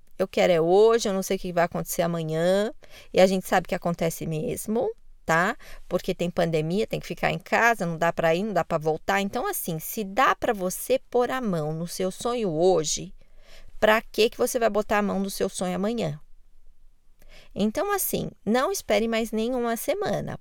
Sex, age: female, 20-39